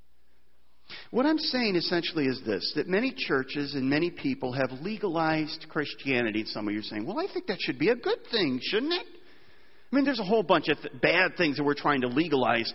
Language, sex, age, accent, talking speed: English, male, 40-59, American, 210 wpm